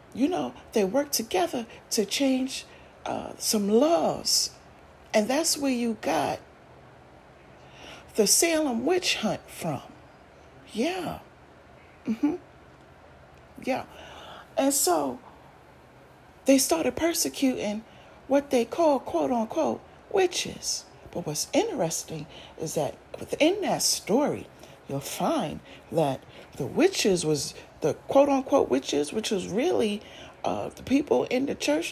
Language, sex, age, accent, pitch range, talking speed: English, female, 40-59, American, 215-315 Hz, 110 wpm